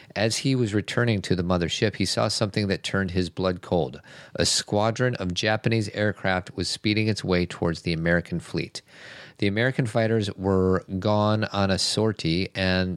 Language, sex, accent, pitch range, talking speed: English, male, American, 95-110 Hz, 170 wpm